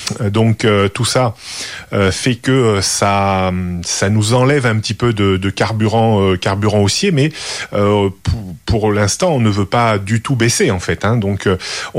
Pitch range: 105-125 Hz